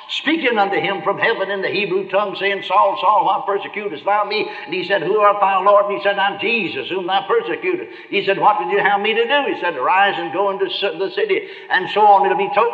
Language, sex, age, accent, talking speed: English, male, 60-79, American, 255 wpm